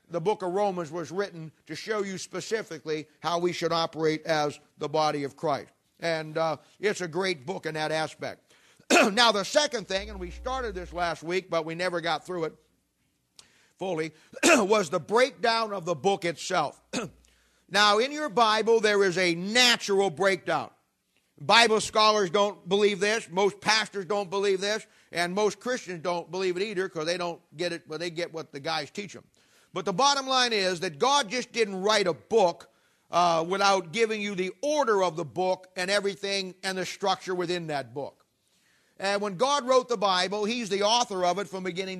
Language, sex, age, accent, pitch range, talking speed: English, male, 50-69, American, 175-215 Hz, 190 wpm